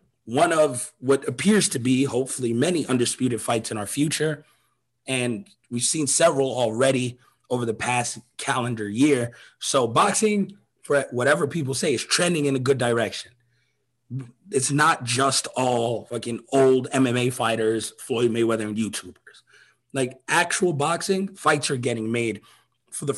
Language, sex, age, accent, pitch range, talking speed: English, male, 30-49, American, 115-140 Hz, 145 wpm